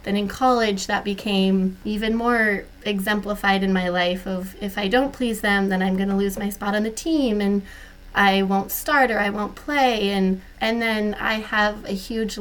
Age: 20-39